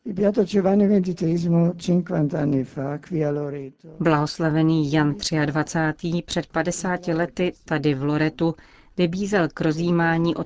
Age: 40-59